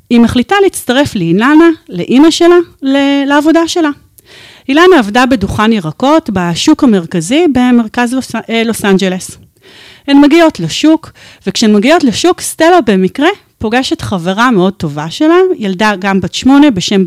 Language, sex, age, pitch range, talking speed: Hebrew, female, 40-59, 200-320 Hz, 120 wpm